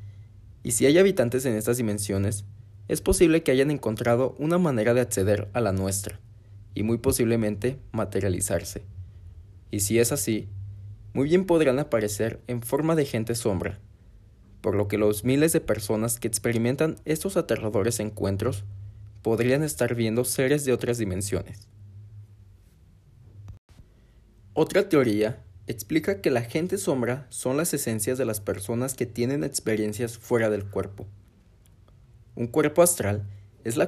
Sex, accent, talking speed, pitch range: male, Mexican, 140 wpm, 100-125 Hz